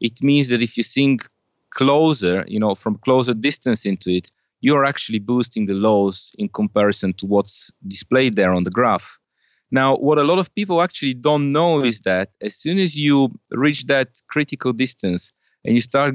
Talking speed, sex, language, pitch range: 185 wpm, male, English, 110-140 Hz